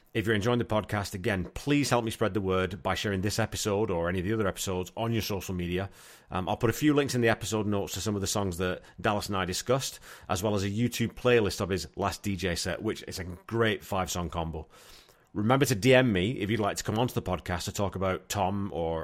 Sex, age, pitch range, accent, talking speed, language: male, 30-49, 90-115 Hz, British, 250 wpm, English